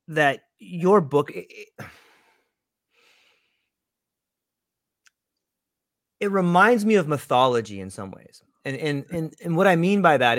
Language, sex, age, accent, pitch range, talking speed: English, male, 30-49, American, 140-200 Hz, 125 wpm